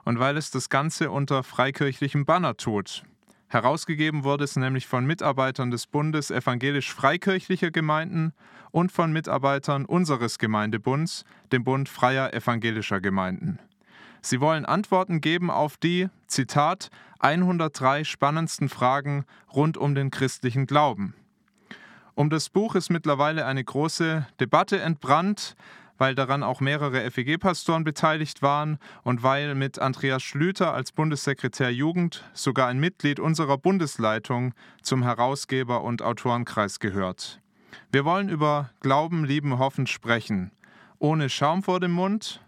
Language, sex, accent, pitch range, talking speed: German, male, German, 130-160 Hz, 125 wpm